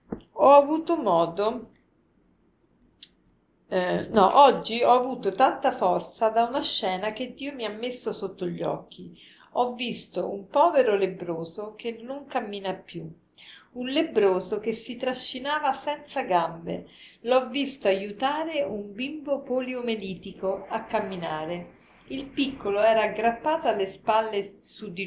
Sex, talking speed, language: female, 125 wpm, Italian